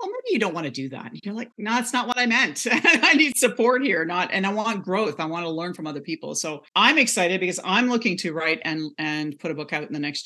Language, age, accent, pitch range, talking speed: English, 40-59, American, 145-185 Hz, 290 wpm